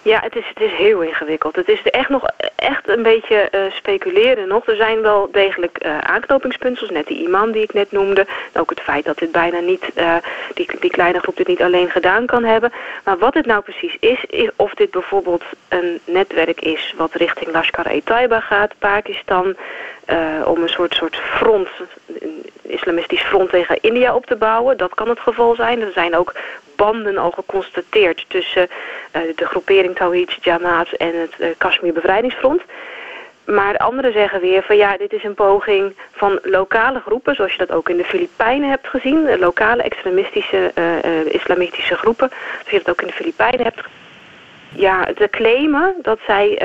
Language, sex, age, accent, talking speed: Dutch, female, 30-49, Dutch, 185 wpm